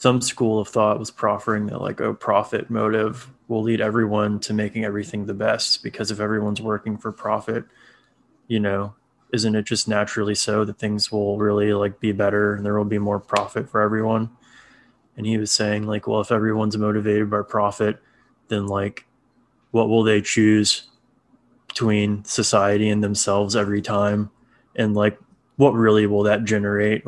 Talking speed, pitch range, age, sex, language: 170 wpm, 105-110 Hz, 20-39, male, English